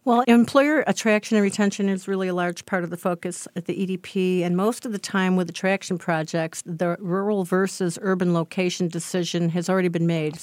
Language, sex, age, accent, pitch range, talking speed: English, female, 50-69, American, 170-195 Hz, 195 wpm